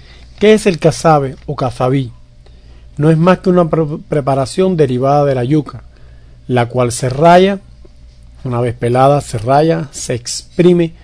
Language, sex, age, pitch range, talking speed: English, male, 50-69, 120-160 Hz, 145 wpm